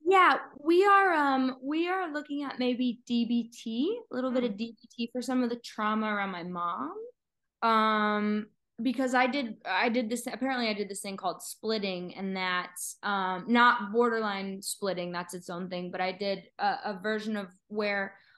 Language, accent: English, American